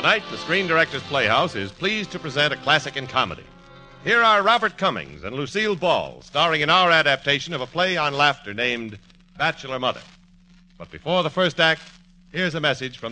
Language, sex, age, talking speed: English, male, 50-69, 190 wpm